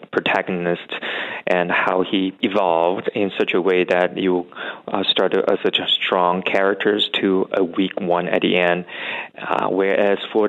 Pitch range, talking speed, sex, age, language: 85-95 Hz, 160 wpm, male, 30-49, English